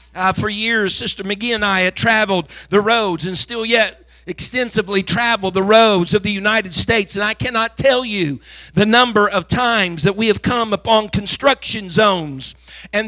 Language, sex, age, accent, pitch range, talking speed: English, male, 50-69, American, 195-255 Hz, 180 wpm